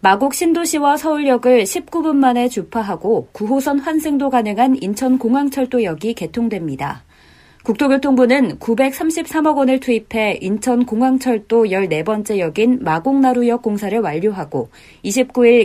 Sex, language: female, Korean